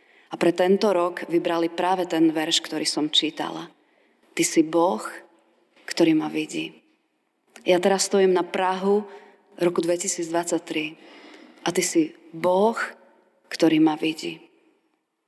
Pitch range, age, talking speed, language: 175-215 Hz, 30-49, 120 wpm, Slovak